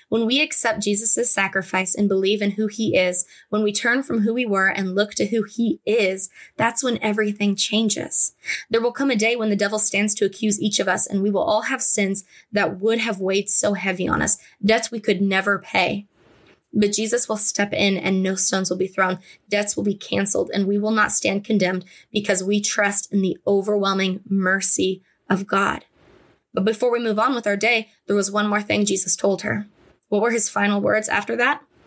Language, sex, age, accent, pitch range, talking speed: English, female, 20-39, American, 195-225 Hz, 215 wpm